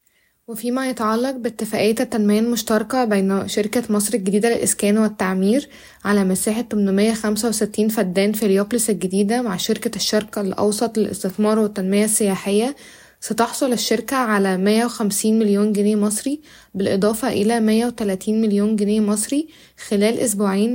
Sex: female